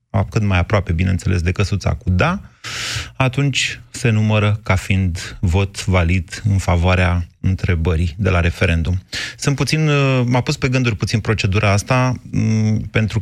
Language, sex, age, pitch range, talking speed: Romanian, male, 30-49, 95-120 Hz, 140 wpm